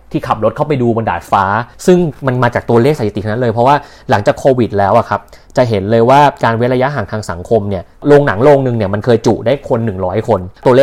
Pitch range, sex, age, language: 110-140 Hz, male, 30-49, Thai